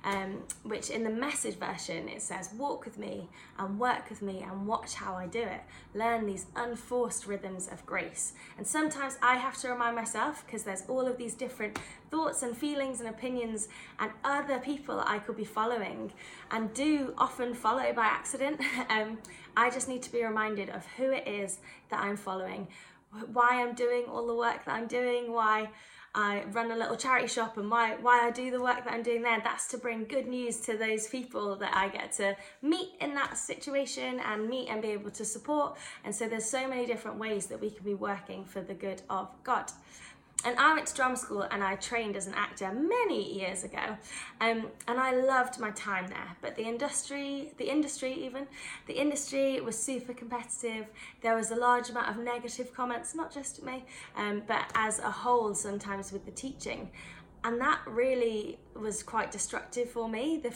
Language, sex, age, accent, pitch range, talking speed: English, female, 20-39, British, 210-255 Hz, 200 wpm